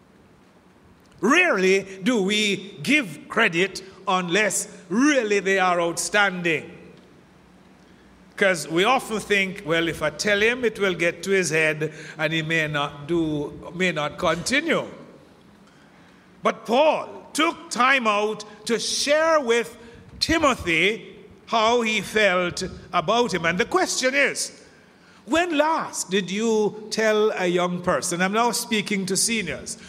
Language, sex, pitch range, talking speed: English, male, 185-250 Hz, 130 wpm